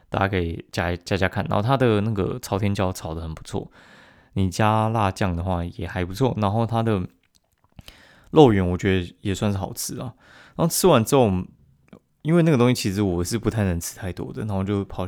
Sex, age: male, 20-39